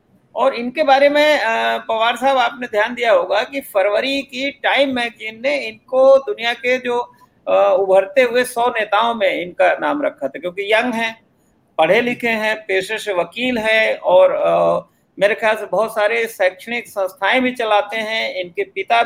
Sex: male